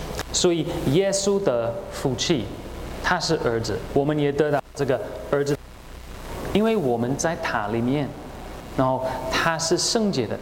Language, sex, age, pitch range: Chinese, male, 30-49, 120-170 Hz